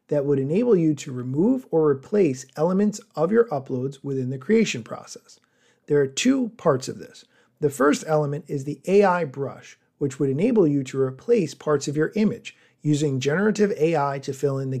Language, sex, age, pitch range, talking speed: English, male, 40-59, 135-190 Hz, 185 wpm